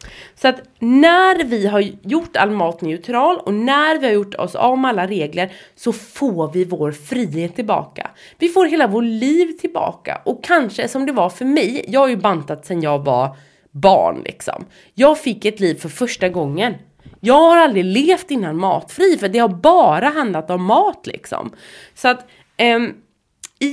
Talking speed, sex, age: 180 wpm, female, 30-49